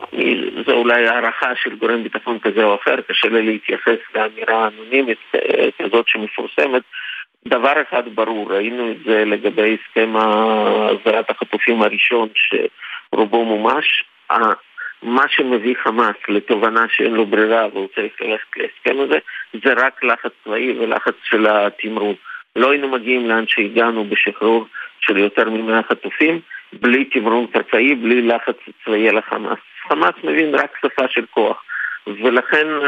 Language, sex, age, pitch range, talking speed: Hebrew, male, 40-59, 110-130 Hz, 130 wpm